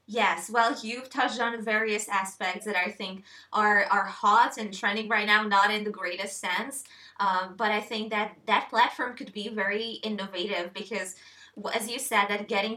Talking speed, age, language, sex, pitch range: 185 wpm, 20-39, English, female, 195-230 Hz